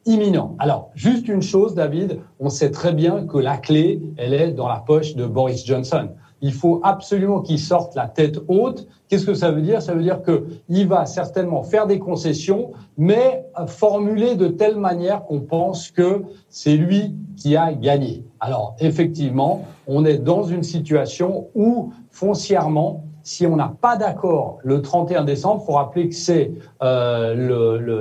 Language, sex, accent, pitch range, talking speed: French, male, French, 140-190 Hz, 175 wpm